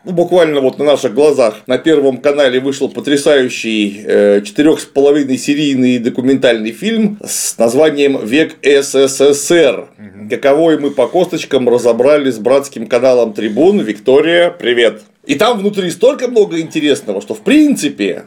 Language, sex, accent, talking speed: Russian, male, native, 125 wpm